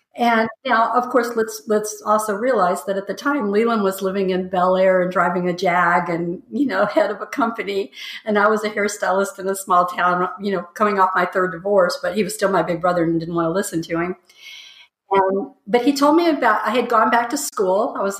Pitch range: 180-220 Hz